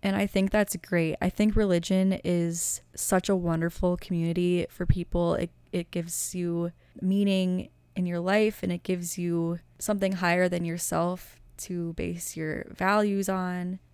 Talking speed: 155 wpm